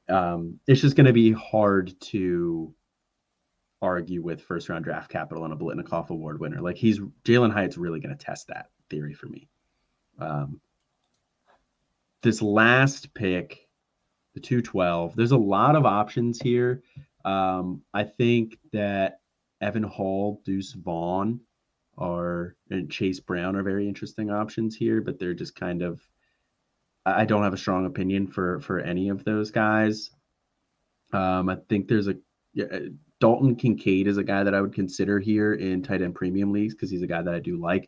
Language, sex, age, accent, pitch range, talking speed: English, male, 30-49, American, 90-115 Hz, 165 wpm